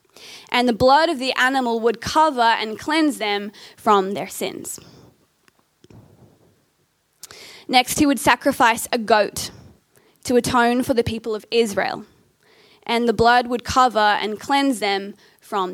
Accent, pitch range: Australian, 230-280 Hz